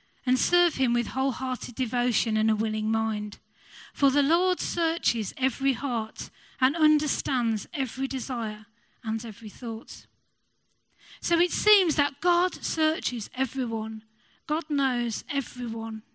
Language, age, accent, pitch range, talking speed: English, 40-59, British, 235-295 Hz, 125 wpm